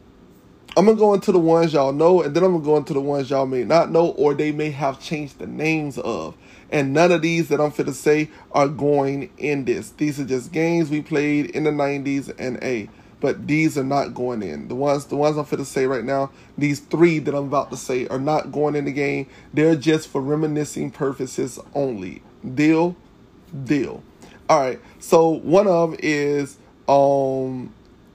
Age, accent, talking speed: 30-49, American, 210 wpm